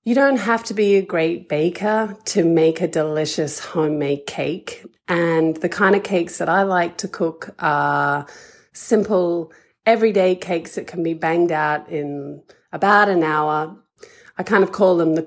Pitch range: 160-205 Hz